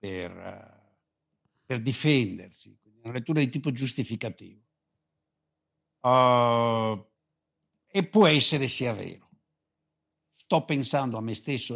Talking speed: 90 wpm